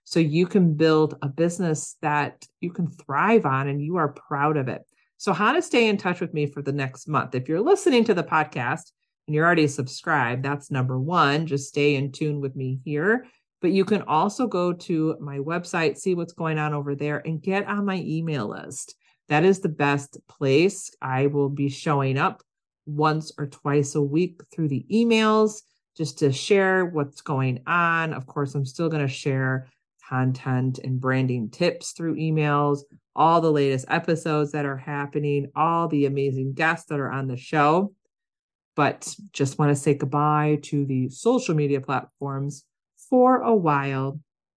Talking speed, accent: 185 wpm, American